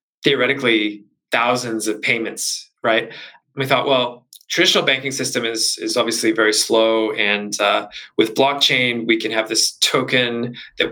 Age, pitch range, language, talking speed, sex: 20-39, 110-135 Hz, English, 150 wpm, male